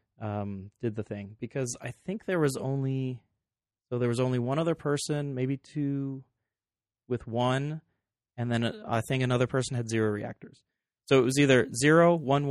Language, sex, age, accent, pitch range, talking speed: English, male, 30-49, American, 110-135 Hz, 175 wpm